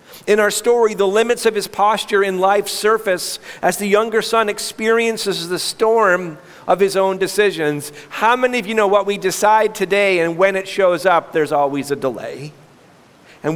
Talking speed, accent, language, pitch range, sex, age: 180 wpm, American, English, 155-225 Hz, male, 50-69